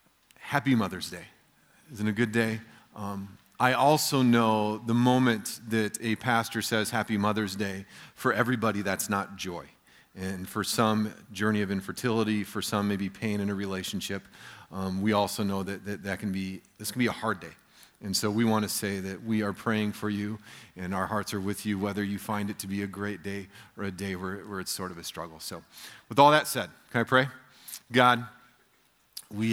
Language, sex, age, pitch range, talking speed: English, male, 40-59, 100-115 Hz, 205 wpm